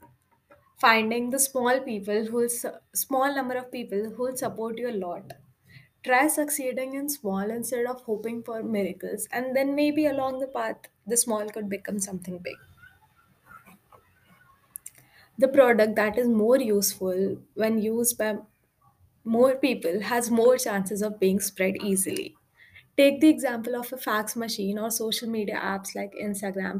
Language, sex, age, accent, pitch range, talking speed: English, female, 20-39, Indian, 205-255 Hz, 150 wpm